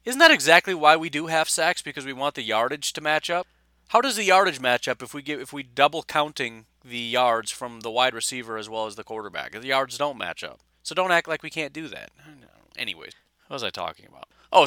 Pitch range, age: 120-160 Hz, 30-49